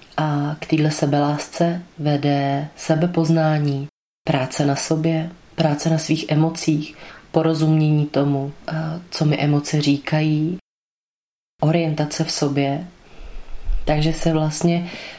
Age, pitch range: 20-39, 145-160 Hz